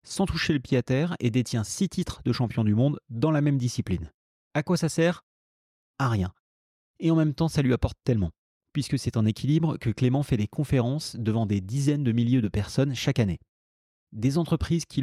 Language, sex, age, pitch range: French, male, 30-49, 115-145 Hz